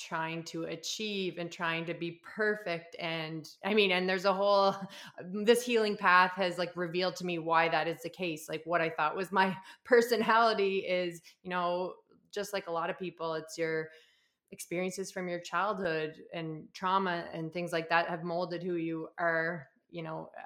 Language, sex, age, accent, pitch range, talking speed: English, female, 20-39, American, 170-195 Hz, 185 wpm